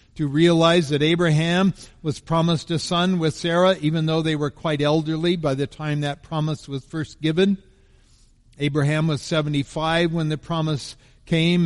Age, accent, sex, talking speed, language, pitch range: 50-69, American, male, 160 wpm, English, 140-175 Hz